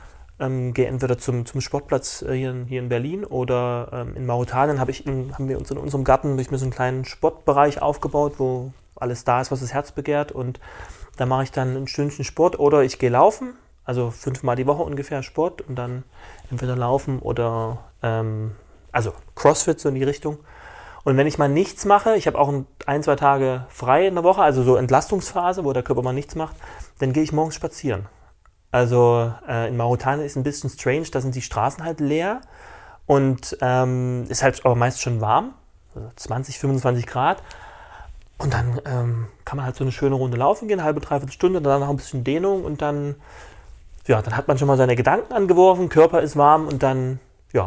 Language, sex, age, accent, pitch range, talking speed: German, male, 30-49, German, 125-145 Hz, 200 wpm